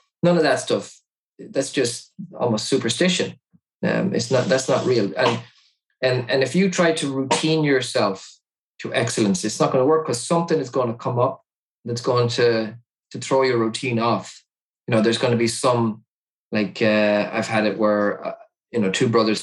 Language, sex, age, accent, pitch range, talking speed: English, male, 20-39, Irish, 105-125 Hz, 195 wpm